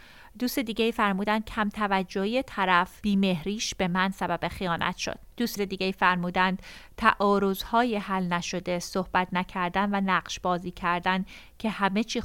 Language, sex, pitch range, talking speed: Persian, female, 185-220 Hz, 130 wpm